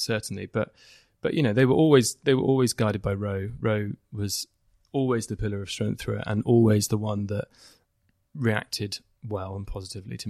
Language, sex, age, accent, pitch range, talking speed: English, male, 20-39, British, 105-120 Hz, 190 wpm